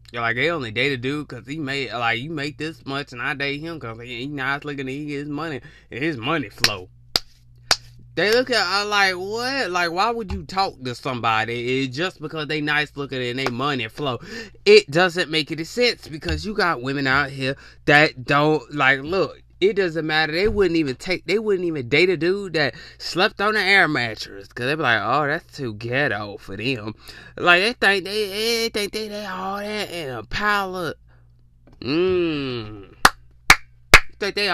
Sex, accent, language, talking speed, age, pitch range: male, American, English, 205 wpm, 20-39, 120-175 Hz